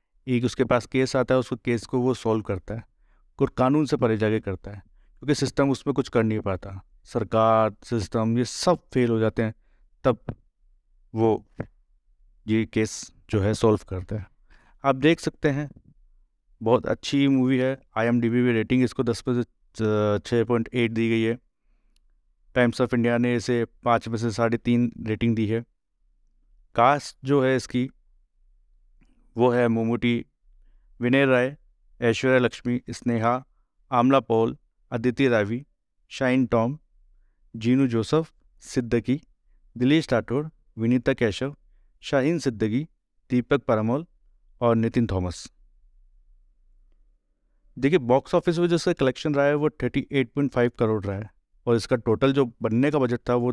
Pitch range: 110-130 Hz